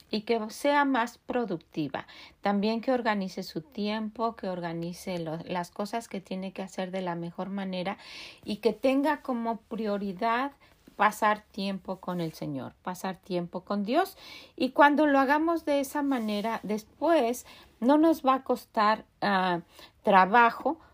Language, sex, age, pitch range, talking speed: Spanish, female, 40-59, 190-255 Hz, 145 wpm